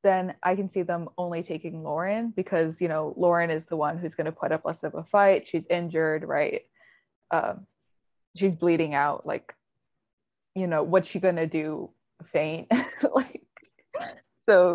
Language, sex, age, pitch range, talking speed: English, female, 20-39, 160-195 Hz, 170 wpm